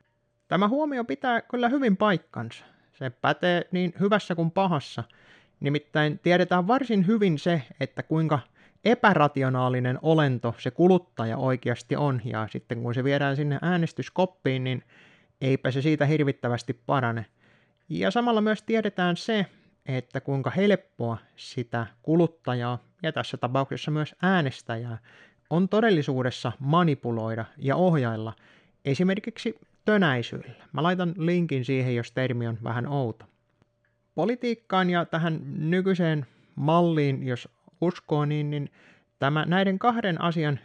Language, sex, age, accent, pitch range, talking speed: Finnish, male, 30-49, native, 125-185 Hz, 120 wpm